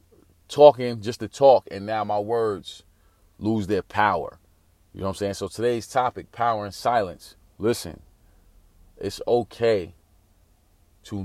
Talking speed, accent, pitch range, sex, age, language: 140 wpm, American, 85-110 Hz, male, 30-49, English